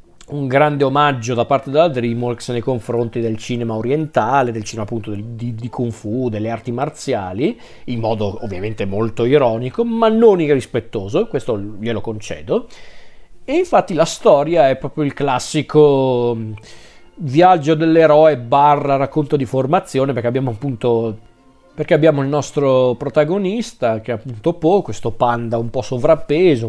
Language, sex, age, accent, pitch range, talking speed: Italian, male, 40-59, native, 115-140 Hz, 145 wpm